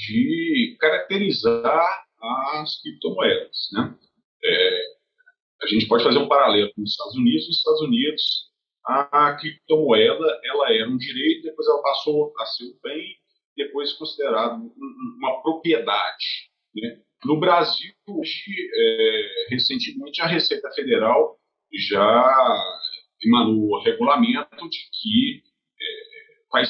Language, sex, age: Portuguese, male, 40-59